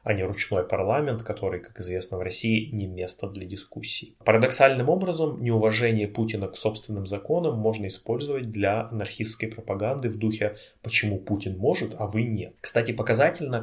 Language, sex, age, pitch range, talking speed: Russian, male, 20-39, 100-115 Hz, 155 wpm